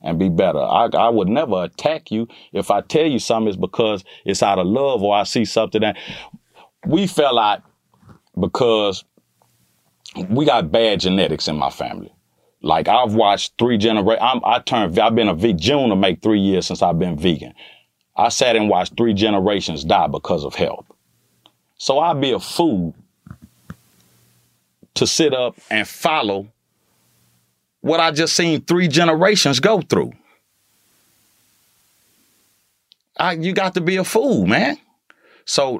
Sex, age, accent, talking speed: male, 40-59, American, 155 wpm